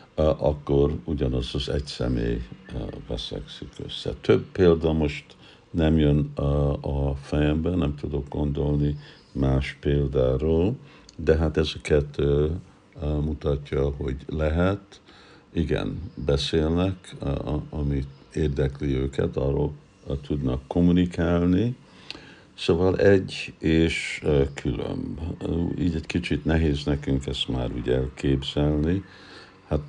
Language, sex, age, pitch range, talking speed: Hungarian, male, 60-79, 70-80 Hz, 95 wpm